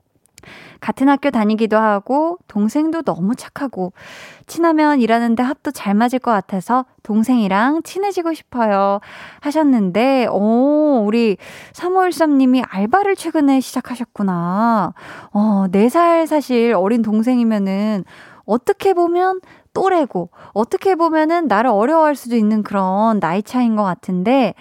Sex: female